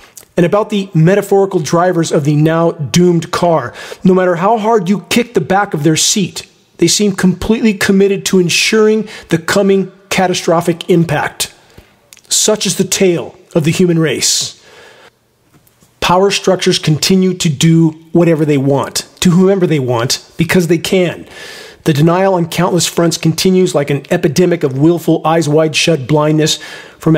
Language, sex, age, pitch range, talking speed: English, male, 40-59, 160-190 Hz, 155 wpm